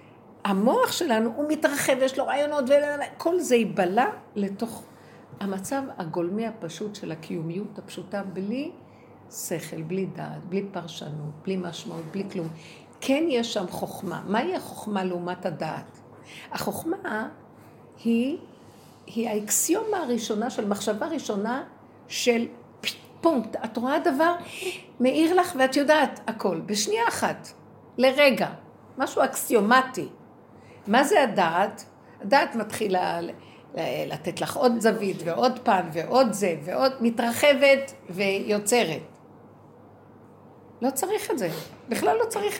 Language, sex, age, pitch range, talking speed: Hebrew, female, 60-79, 190-285 Hz, 120 wpm